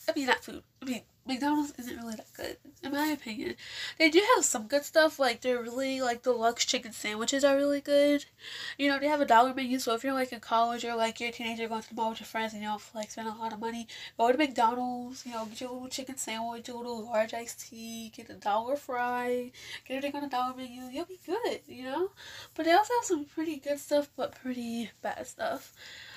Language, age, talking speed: English, 10-29, 245 wpm